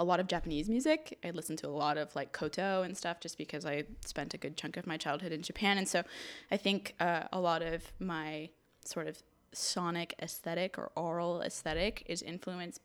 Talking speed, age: 210 wpm, 20-39